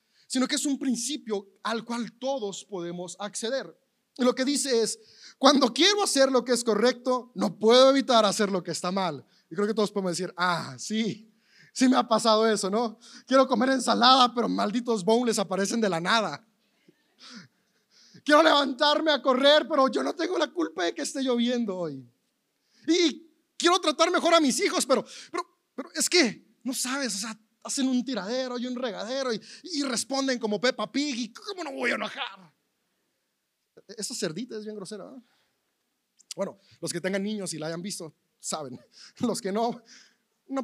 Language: Spanish